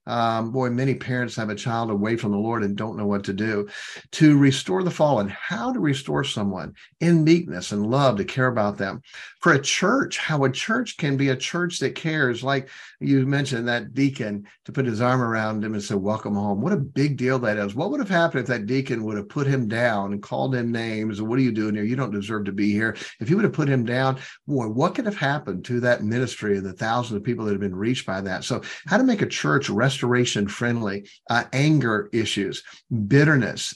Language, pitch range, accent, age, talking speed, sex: English, 110-140 Hz, American, 50-69, 235 wpm, male